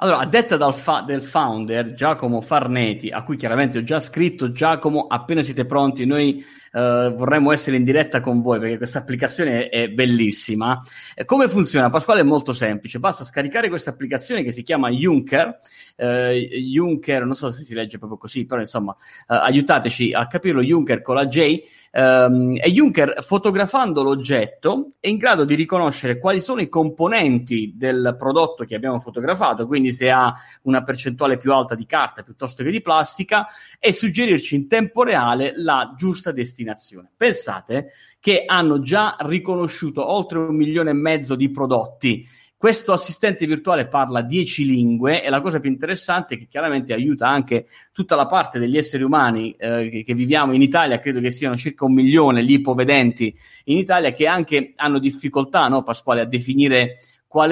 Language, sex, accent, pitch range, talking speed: Italian, male, native, 125-155 Hz, 165 wpm